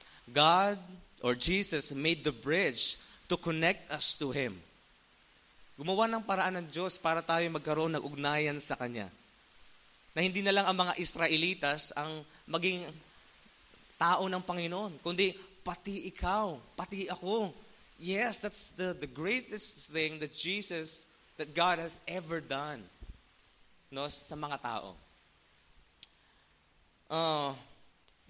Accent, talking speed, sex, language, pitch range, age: Filipino, 125 wpm, male, English, 120-175 Hz, 20-39